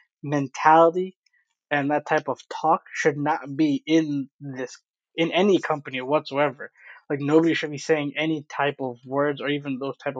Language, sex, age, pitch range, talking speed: English, male, 20-39, 135-160 Hz, 165 wpm